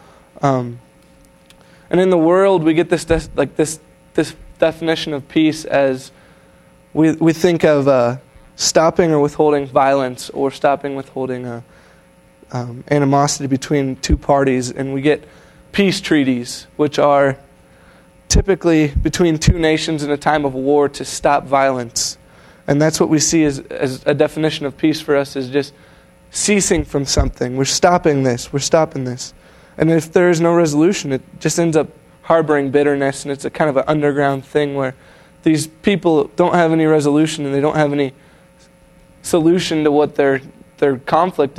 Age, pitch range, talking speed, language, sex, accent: 20-39, 135-160 Hz, 165 wpm, English, male, American